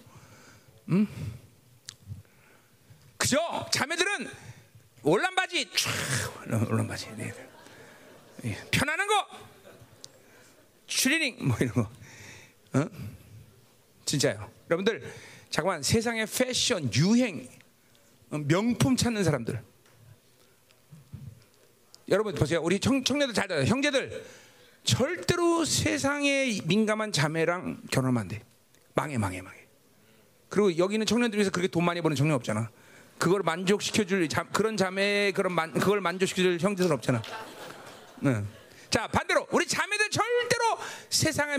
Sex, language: male, Korean